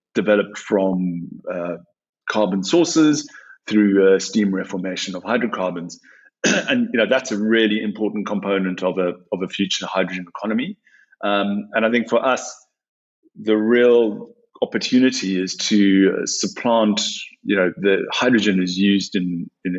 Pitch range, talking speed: 95-115 Hz, 140 wpm